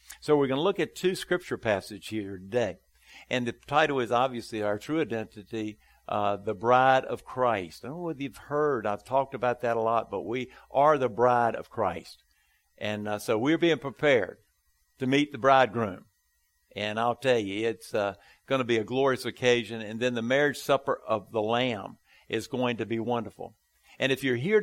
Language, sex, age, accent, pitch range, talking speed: English, male, 50-69, American, 110-140 Hz, 200 wpm